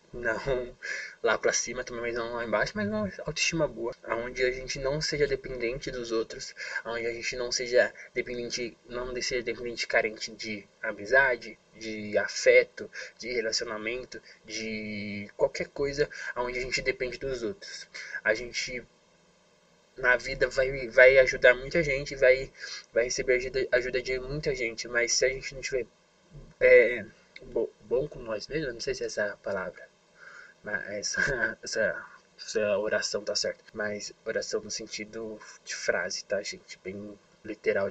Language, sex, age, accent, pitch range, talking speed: Portuguese, male, 20-39, Brazilian, 120-155 Hz, 150 wpm